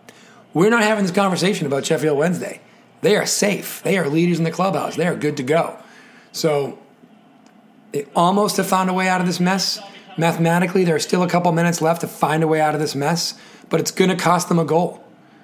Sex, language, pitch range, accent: male, English, 165-215 Hz, American